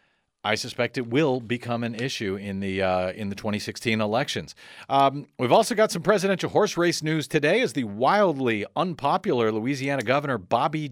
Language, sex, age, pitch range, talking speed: English, male, 40-59, 110-175 Hz, 170 wpm